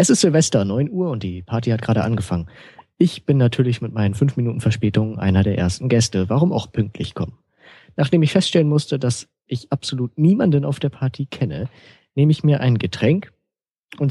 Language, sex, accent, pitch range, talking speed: German, male, German, 105-135 Hz, 190 wpm